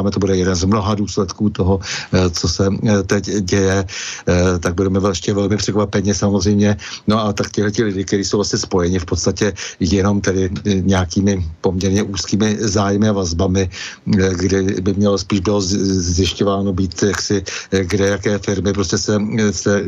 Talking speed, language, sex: 150 wpm, Slovak, male